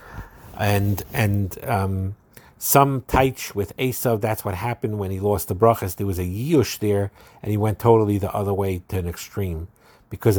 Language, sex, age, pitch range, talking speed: English, male, 50-69, 100-130 Hz, 180 wpm